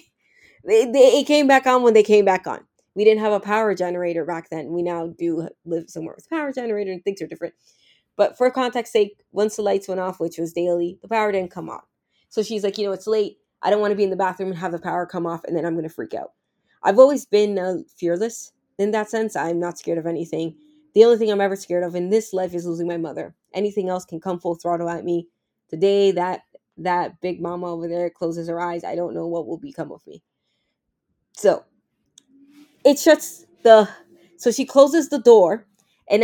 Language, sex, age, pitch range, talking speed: English, female, 20-39, 175-230 Hz, 230 wpm